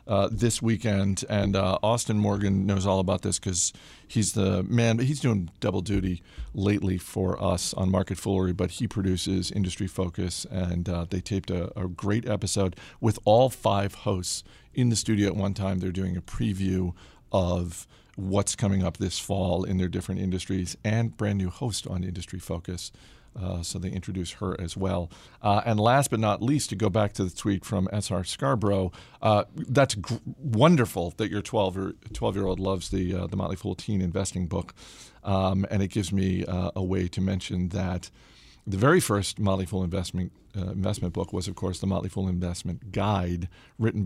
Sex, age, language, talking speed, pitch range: male, 40-59, English, 185 wpm, 90-105 Hz